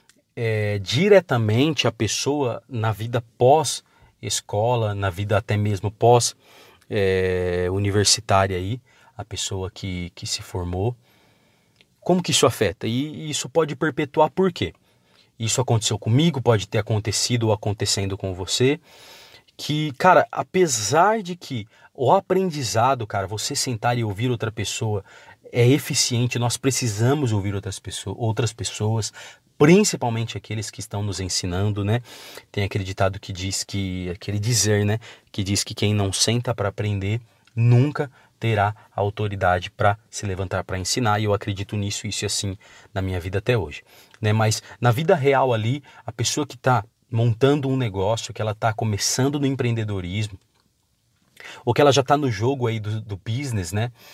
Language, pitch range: Portuguese, 100-130 Hz